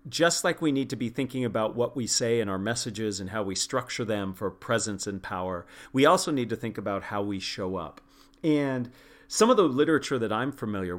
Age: 40-59